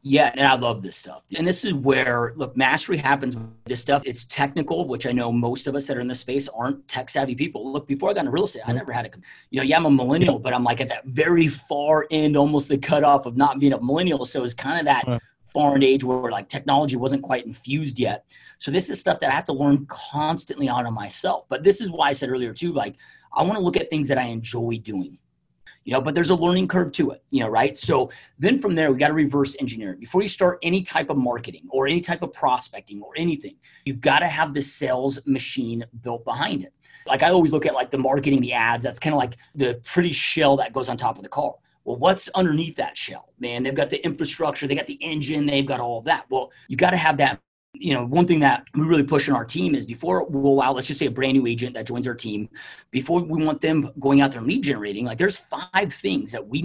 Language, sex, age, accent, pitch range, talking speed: English, male, 30-49, American, 125-150 Hz, 260 wpm